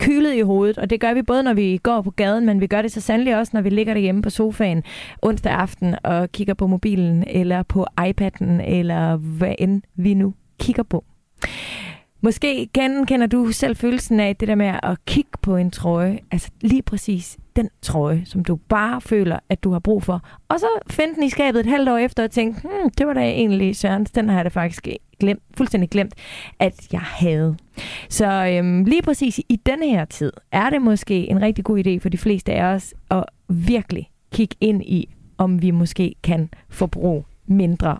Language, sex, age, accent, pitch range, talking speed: Danish, female, 30-49, native, 180-225 Hz, 205 wpm